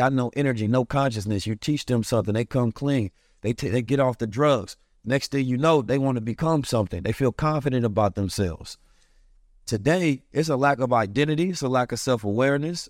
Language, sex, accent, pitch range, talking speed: English, male, American, 115-145 Hz, 205 wpm